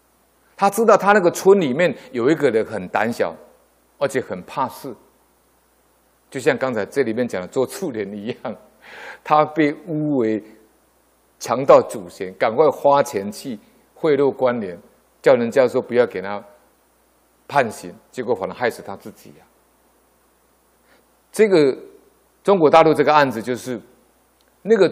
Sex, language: male, Chinese